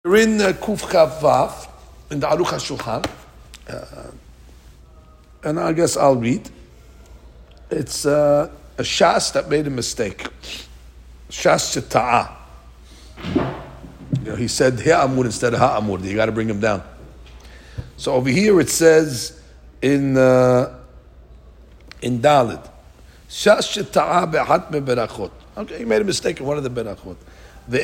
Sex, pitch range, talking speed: male, 100-155 Hz, 130 wpm